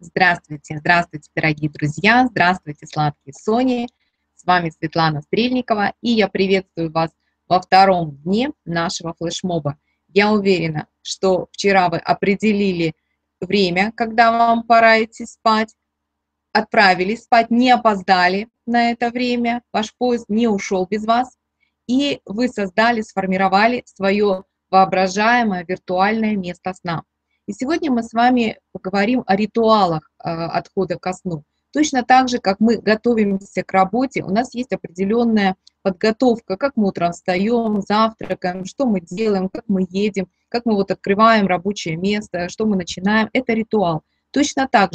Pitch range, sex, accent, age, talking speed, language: 185-230 Hz, female, native, 20-39, 135 wpm, Russian